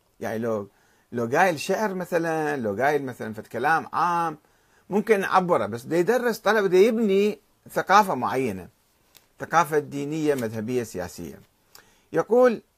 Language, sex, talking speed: Arabic, male, 115 wpm